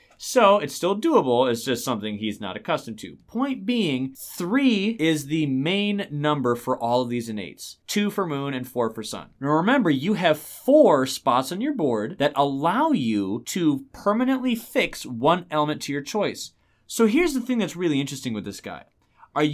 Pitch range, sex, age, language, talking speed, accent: 130-205 Hz, male, 30-49, English, 185 wpm, American